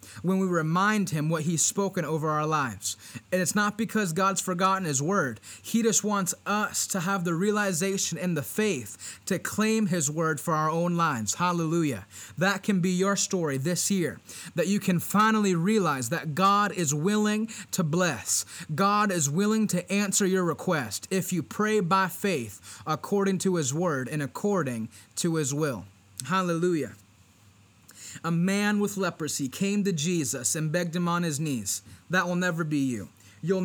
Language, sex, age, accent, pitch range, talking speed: English, male, 30-49, American, 135-195 Hz, 175 wpm